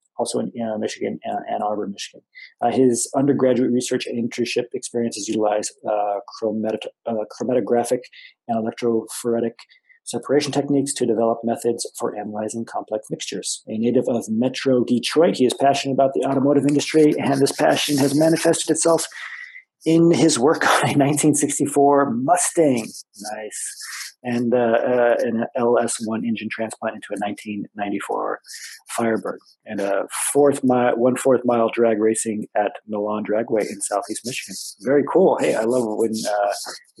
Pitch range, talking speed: 110-140 Hz, 150 wpm